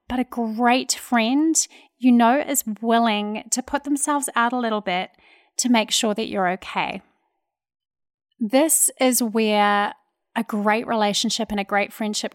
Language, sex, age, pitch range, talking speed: English, female, 30-49, 215-270 Hz, 150 wpm